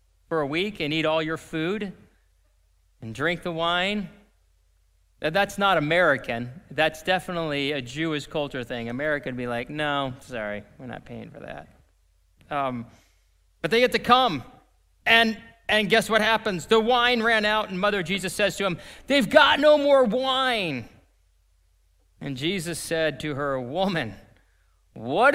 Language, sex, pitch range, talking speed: English, male, 125-200 Hz, 155 wpm